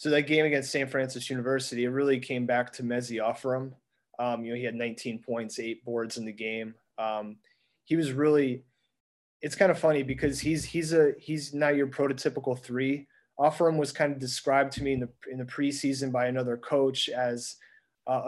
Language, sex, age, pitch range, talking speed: English, male, 30-49, 125-150 Hz, 195 wpm